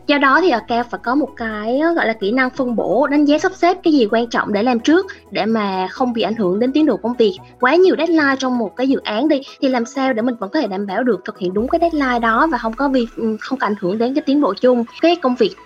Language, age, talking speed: Vietnamese, 20-39, 300 wpm